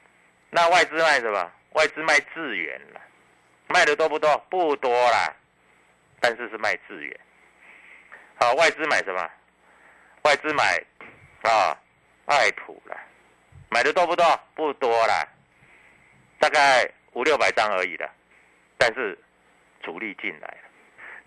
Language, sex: Chinese, male